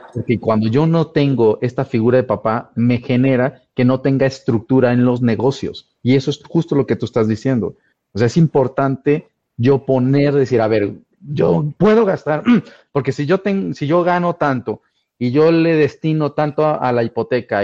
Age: 40-59